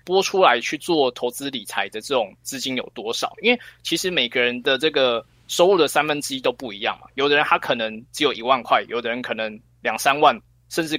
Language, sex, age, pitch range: Chinese, male, 20-39, 120-185 Hz